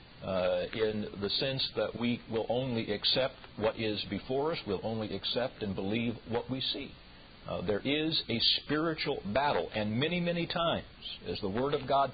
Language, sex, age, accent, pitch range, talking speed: English, male, 50-69, American, 100-135 Hz, 180 wpm